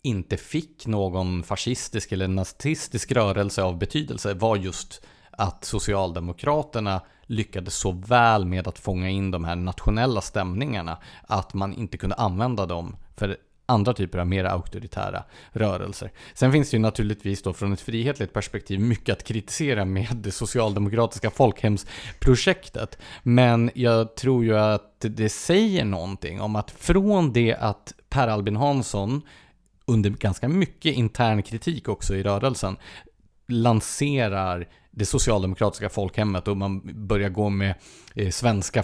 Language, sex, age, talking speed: English, male, 30-49, 135 wpm